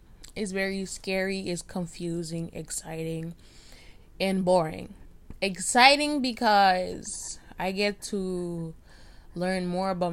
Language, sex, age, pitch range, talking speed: English, female, 10-29, 160-195 Hz, 95 wpm